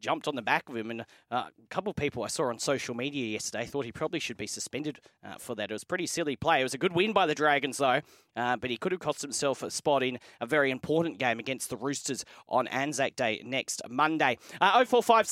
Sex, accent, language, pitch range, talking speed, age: male, Australian, English, 135-180 Hz, 260 wpm, 30-49